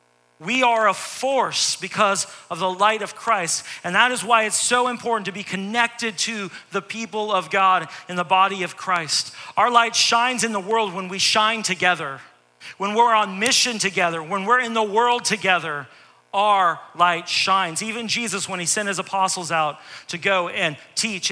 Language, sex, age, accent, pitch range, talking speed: English, male, 40-59, American, 150-215 Hz, 185 wpm